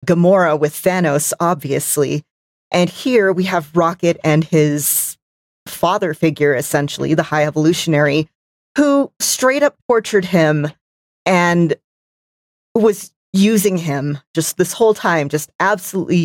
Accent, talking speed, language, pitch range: American, 120 wpm, English, 150-180 Hz